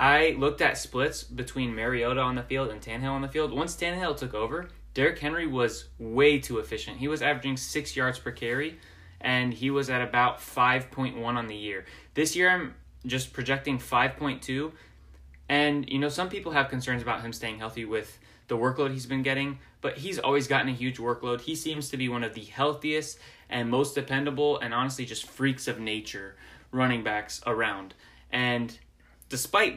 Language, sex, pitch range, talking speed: English, male, 115-140 Hz, 185 wpm